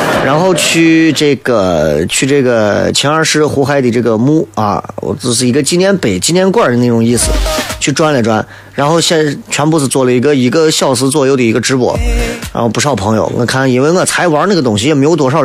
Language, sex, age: Chinese, male, 30-49